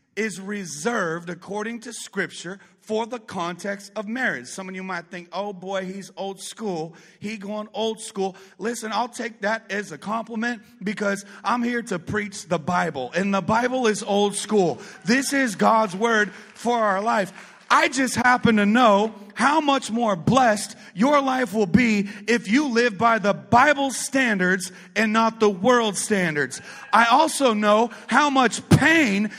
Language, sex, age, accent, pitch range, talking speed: English, male, 40-59, American, 170-230 Hz, 165 wpm